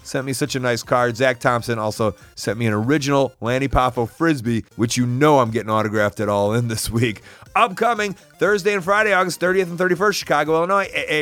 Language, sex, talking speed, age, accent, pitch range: English, male, 205 wpm, 30-49, American, 130-185 Hz